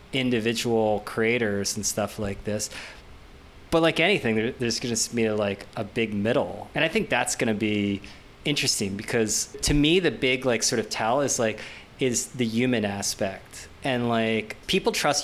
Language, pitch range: English, 105-125 Hz